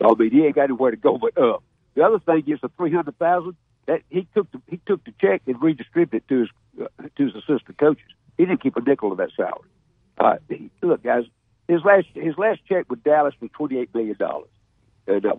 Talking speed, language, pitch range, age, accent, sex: 240 wpm, English, 120-160 Hz, 60-79, American, male